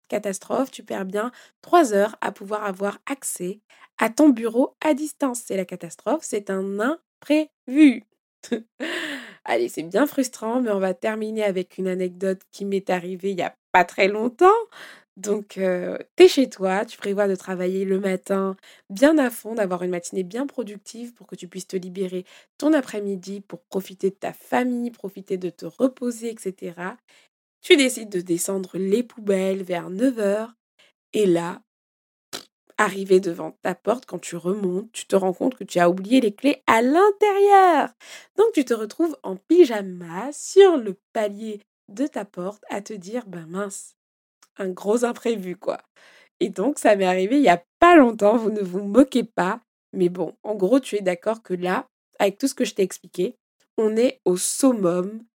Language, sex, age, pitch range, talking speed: French, female, 20-39, 190-250 Hz, 175 wpm